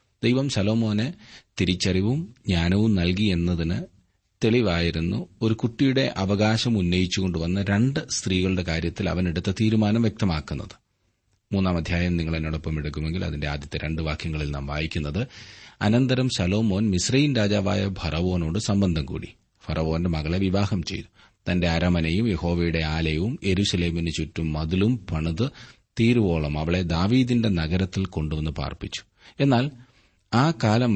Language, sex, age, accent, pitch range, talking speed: Malayalam, male, 30-49, native, 85-115 Hz, 105 wpm